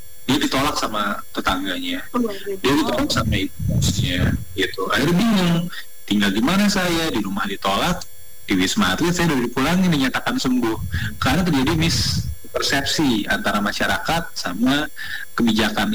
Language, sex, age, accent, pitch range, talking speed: Indonesian, male, 30-49, native, 120-175 Hz, 125 wpm